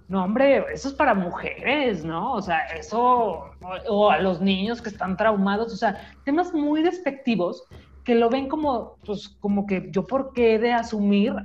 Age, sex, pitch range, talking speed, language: 40-59, female, 195-235 Hz, 190 wpm, Spanish